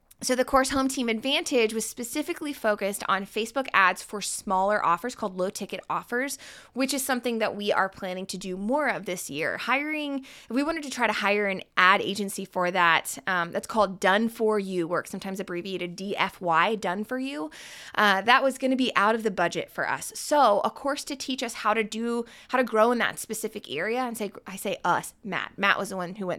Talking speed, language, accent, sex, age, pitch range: 220 wpm, English, American, female, 20-39, 185-260 Hz